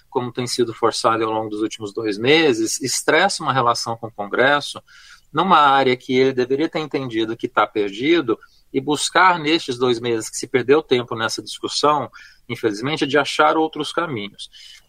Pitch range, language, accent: 125-195 Hz, Portuguese, Brazilian